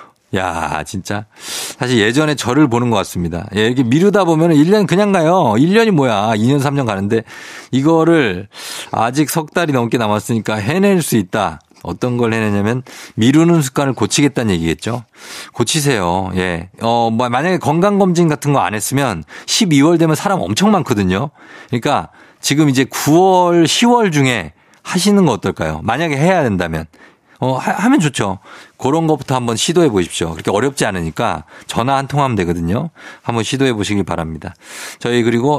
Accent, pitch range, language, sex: native, 105-155 Hz, Korean, male